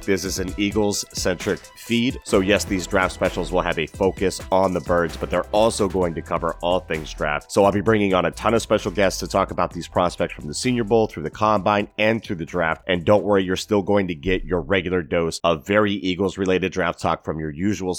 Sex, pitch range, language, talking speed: male, 90-110 Hz, English, 235 wpm